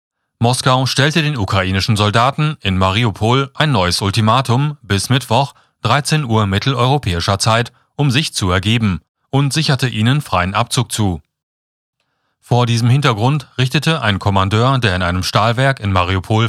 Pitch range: 100-135 Hz